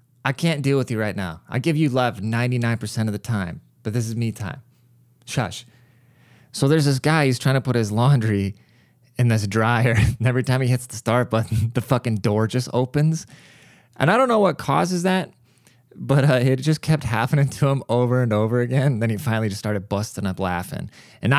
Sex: male